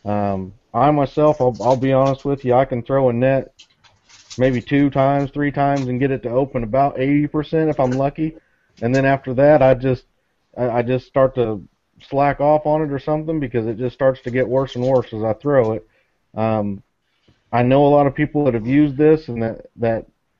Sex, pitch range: male, 120-140 Hz